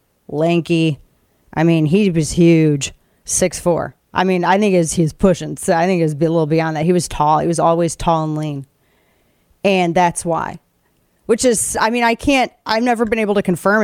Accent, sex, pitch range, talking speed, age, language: American, female, 165-215 Hz, 210 wpm, 30-49, English